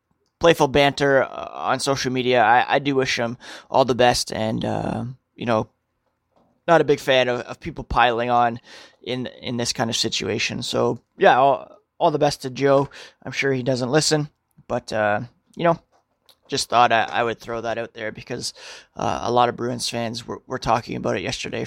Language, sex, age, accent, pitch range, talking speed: English, male, 20-39, American, 120-150 Hz, 195 wpm